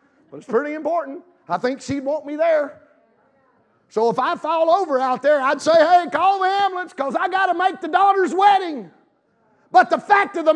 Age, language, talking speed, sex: 40-59, English, 195 wpm, male